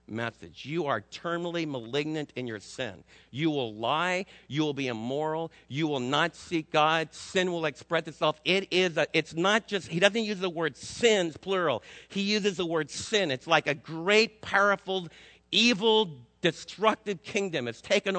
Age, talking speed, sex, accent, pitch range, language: 50-69, 170 wpm, male, American, 140-185 Hz, English